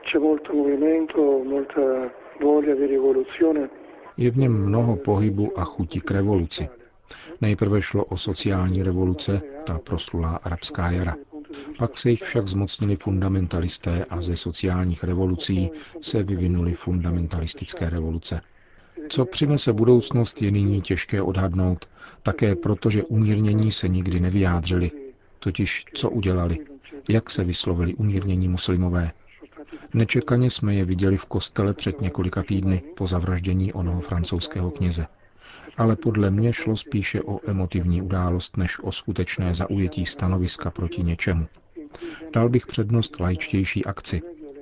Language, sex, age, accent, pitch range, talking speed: Czech, male, 50-69, native, 90-110 Hz, 120 wpm